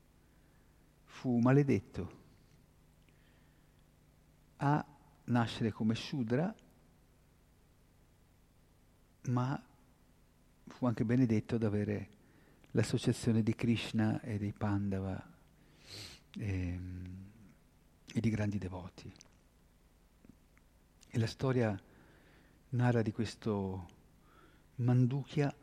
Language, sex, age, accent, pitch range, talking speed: Italian, male, 50-69, native, 95-125 Hz, 70 wpm